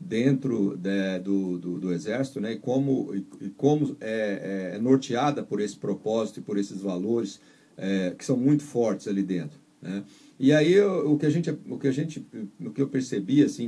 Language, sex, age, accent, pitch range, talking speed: Portuguese, male, 50-69, Brazilian, 115-155 Hz, 195 wpm